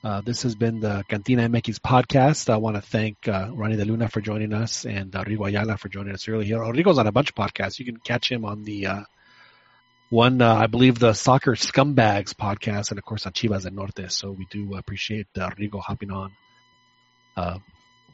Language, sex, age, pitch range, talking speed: English, male, 30-49, 100-125 Hz, 220 wpm